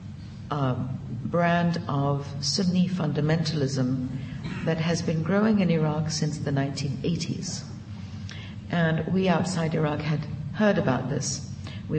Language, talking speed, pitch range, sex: English, 115 wpm, 130-160 Hz, female